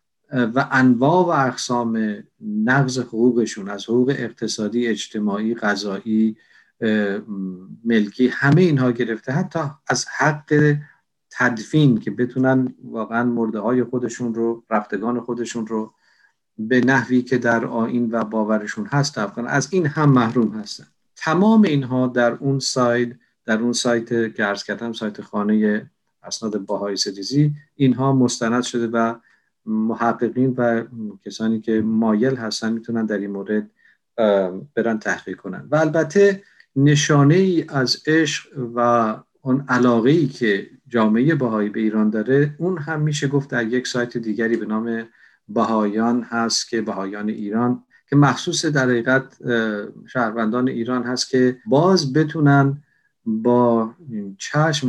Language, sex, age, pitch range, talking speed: Persian, male, 50-69, 110-135 Hz, 130 wpm